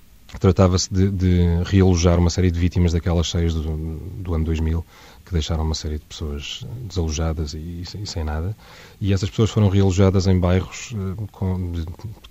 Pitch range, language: 85-100 Hz, Portuguese